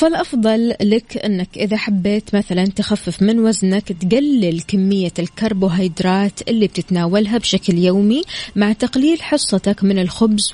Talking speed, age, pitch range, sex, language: 120 wpm, 20-39, 185-220 Hz, female, Arabic